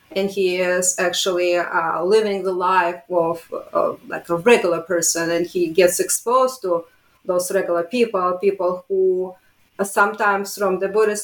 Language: English